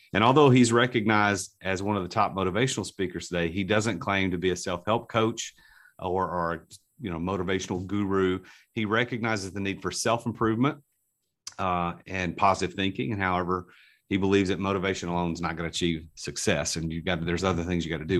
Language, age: English, 40-59